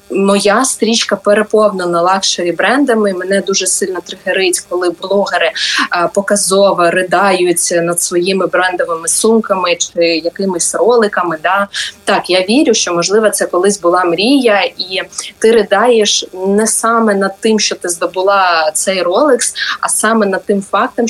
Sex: female